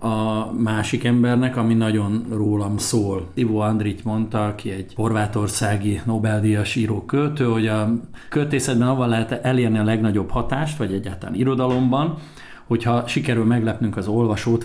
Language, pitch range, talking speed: Hungarian, 105-125 Hz, 130 wpm